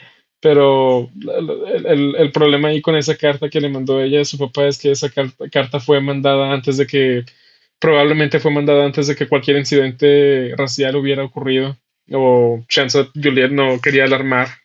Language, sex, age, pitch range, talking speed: Spanish, male, 20-39, 130-145 Hz, 175 wpm